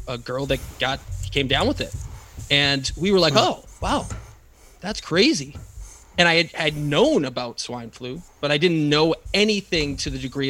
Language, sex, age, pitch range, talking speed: English, male, 20-39, 130-160 Hz, 185 wpm